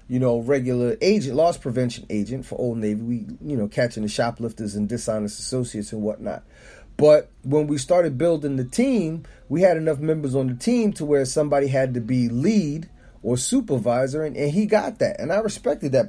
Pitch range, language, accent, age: 125-165 Hz, English, American, 30-49